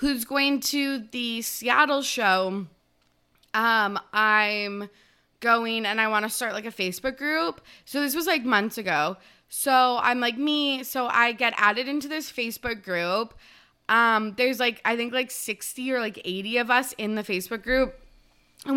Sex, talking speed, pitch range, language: female, 170 wpm, 205-260 Hz, English